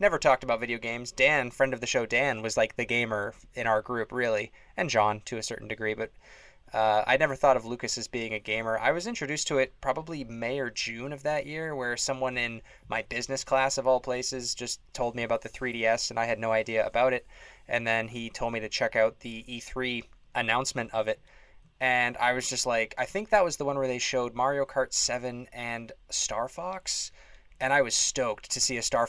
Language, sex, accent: English, male, American